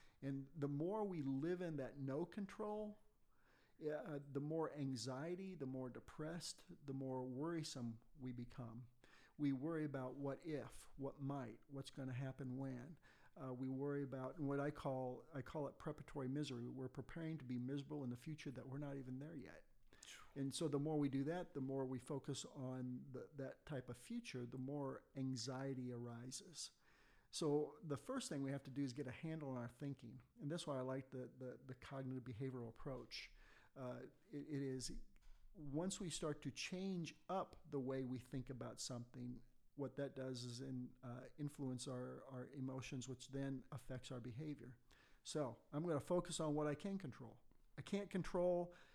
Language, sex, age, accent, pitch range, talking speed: English, male, 50-69, American, 130-150 Hz, 180 wpm